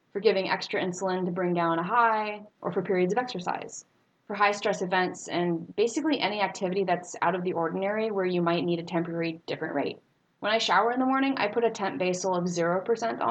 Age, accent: 20-39, American